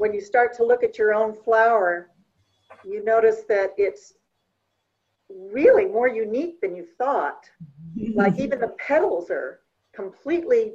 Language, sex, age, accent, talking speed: English, female, 50-69, American, 140 wpm